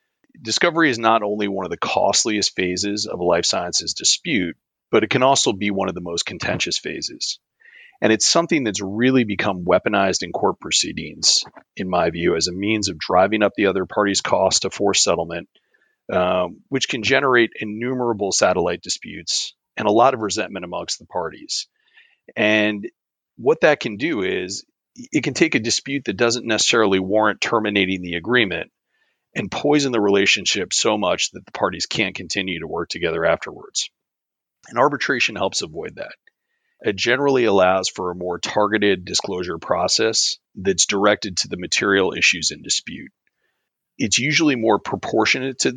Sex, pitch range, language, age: male, 95-135 Hz, English, 30-49